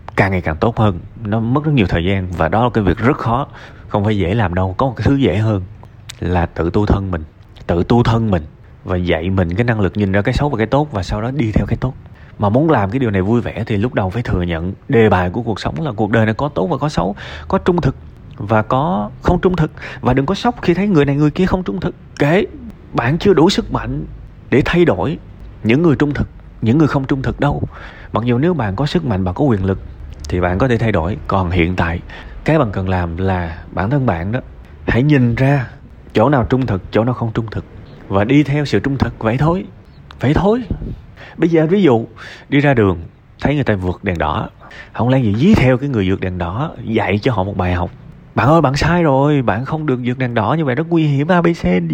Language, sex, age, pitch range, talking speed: Vietnamese, male, 20-39, 95-145 Hz, 260 wpm